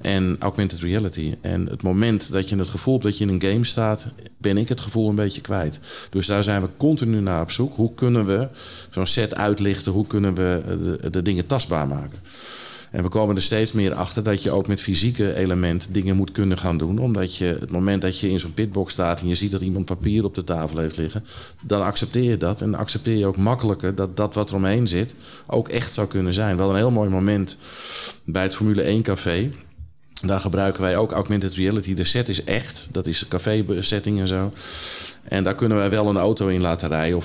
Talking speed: 230 wpm